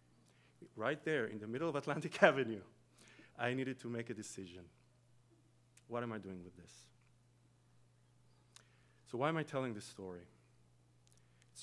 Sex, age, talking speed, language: male, 40-59, 145 wpm, English